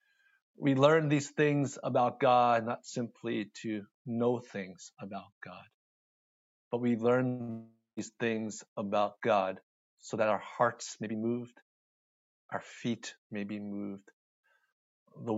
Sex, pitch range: male, 110-145 Hz